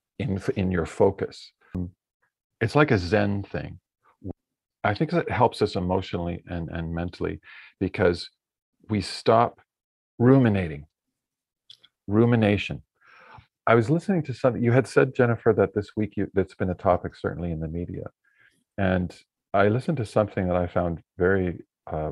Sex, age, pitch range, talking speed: male, 40-59, 85-110 Hz, 145 wpm